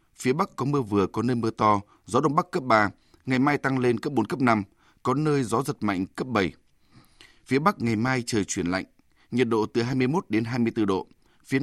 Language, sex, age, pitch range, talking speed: Vietnamese, male, 20-39, 105-130 Hz, 225 wpm